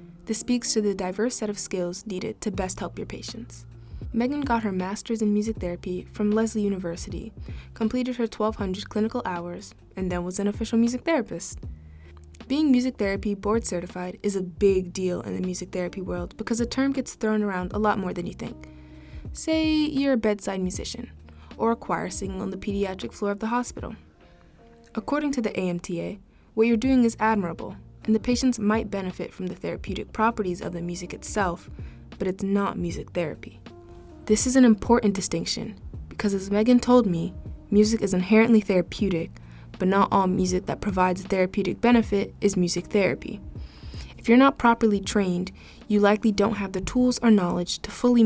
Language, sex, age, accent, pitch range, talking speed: English, female, 20-39, American, 180-225 Hz, 180 wpm